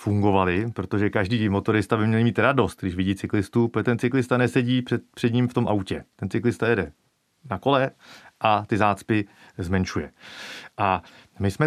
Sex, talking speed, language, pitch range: male, 170 wpm, Czech, 100-135 Hz